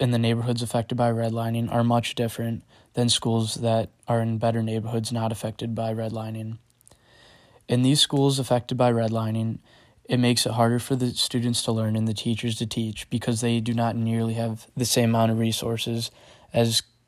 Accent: American